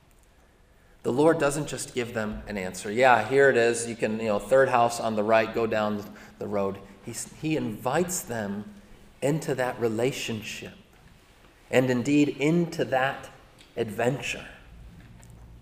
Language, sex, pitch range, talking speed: English, male, 130-210 Hz, 140 wpm